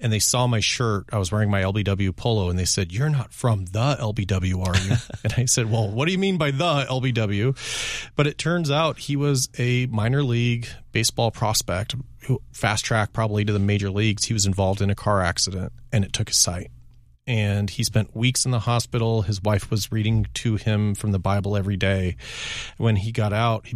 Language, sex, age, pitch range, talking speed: English, male, 30-49, 100-120 Hz, 215 wpm